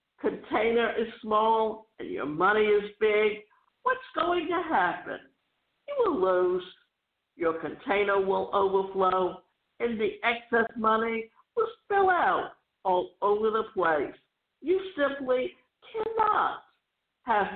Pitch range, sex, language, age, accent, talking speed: 205-340 Hz, female, English, 60-79, American, 115 wpm